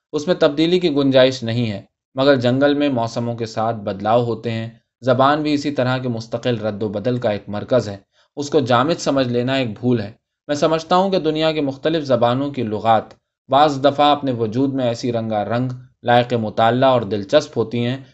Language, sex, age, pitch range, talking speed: Urdu, male, 20-39, 115-150 Hz, 200 wpm